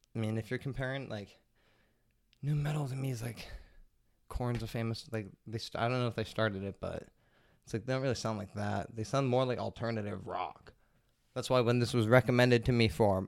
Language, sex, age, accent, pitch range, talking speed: English, male, 20-39, American, 105-125 Hz, 220 wpm